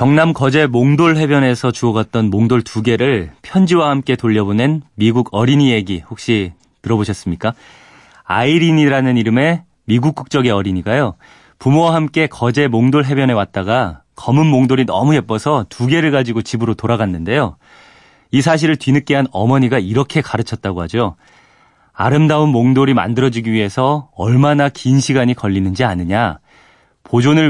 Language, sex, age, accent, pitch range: Korean, male, 30-49, native, 110-140 Hz